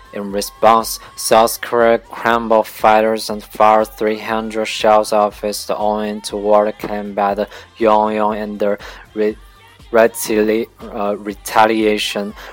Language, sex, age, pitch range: Chinese, male, 20-39, 100-110 Hz